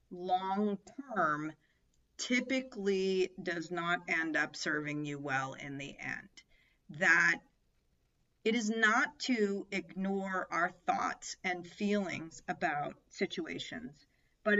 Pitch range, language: 165-205 Hz, English